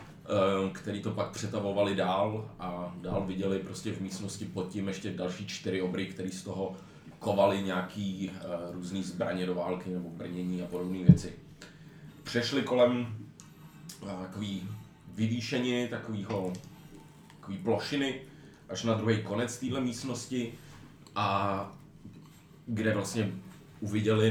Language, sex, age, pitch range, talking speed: Czech, male, 30-49, 95-120 Hz, 120 wpm